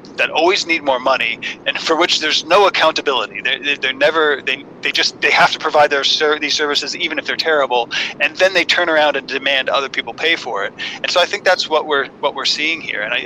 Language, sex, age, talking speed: English, male, 30-49, 235 wpm